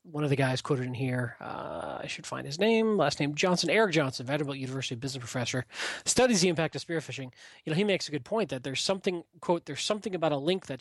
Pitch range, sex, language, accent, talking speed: 130-165 Hz, male, English, American, 245 wpm